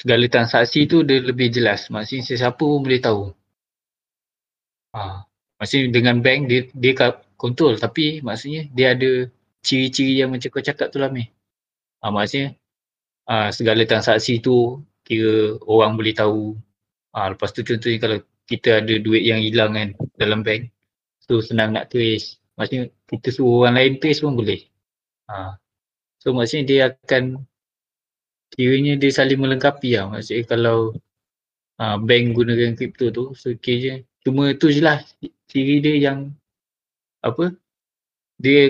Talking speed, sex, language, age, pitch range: 145 wpm, male, Malay, 20-39, 110-130 Hz